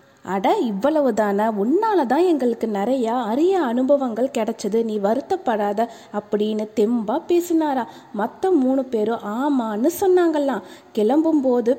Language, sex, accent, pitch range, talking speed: Tamil, female, native, 215-300 Hz, 100 wpm